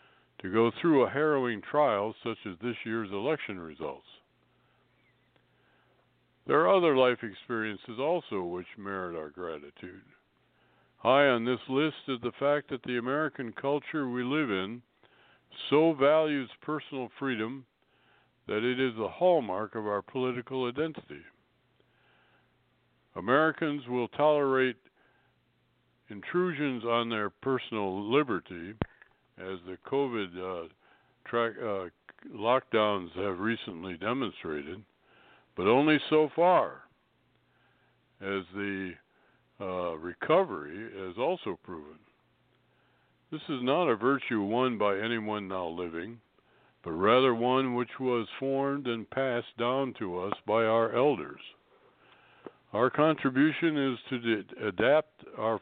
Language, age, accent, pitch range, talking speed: English, 60-79, American, 105-135 Hz, 115 wpm